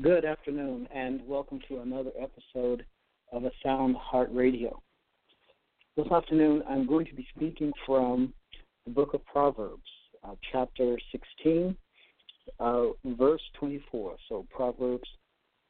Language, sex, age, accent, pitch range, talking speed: English, male, 60-79, American, 120-145 Hz, 120 wpm